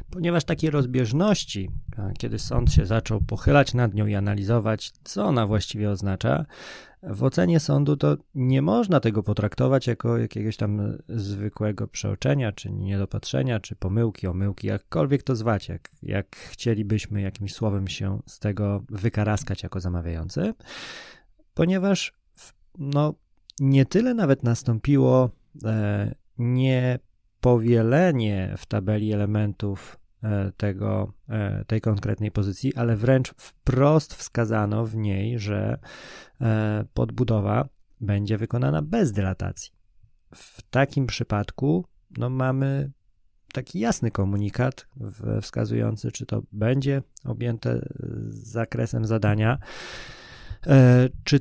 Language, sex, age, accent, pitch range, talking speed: Polish, male, 20-39, native, 105-130 Hz, 105 wpm